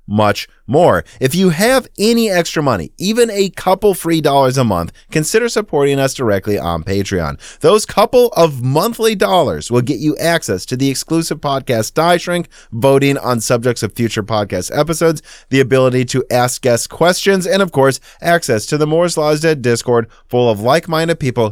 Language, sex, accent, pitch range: English, male, American, 115-165 Hz